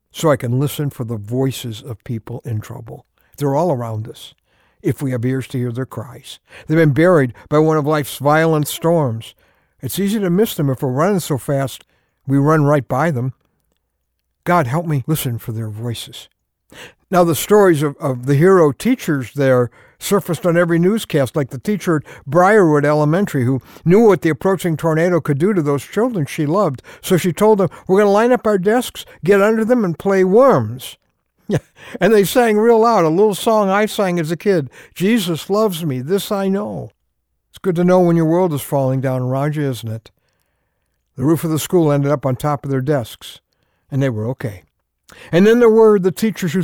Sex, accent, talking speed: male, American, 205 wpm